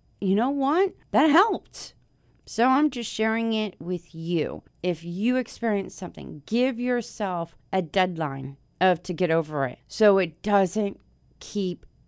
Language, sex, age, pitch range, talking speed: English, female, 40-59, 205-280 Hz, 145 wpm